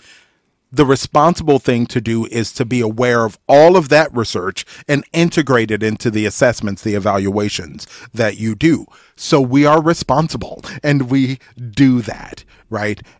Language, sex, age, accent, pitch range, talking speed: English, male, 40-59, American, 110-145 Hz, 155 wpm